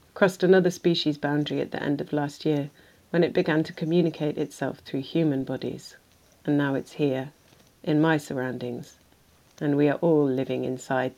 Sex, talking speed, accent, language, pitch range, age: female, 170 wpm, British, English, 135-160 Hz, 40-59